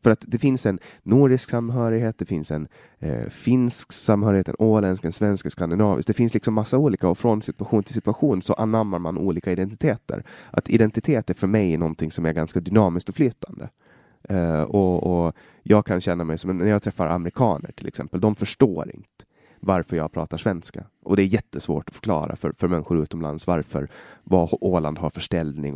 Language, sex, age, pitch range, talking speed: Swedish, male, 20-39, 80-110 Hz, 190 wpm